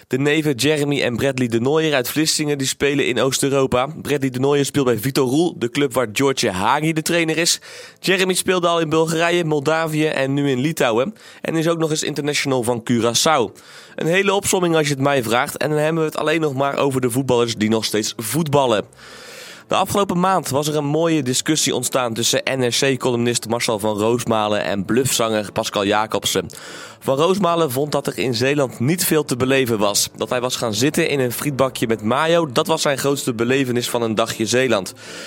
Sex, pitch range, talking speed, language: male, 120-155 Hz, 200 wpm, Dutch